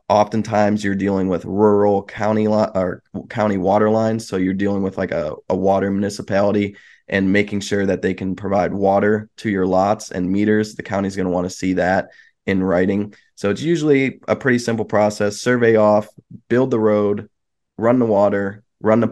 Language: English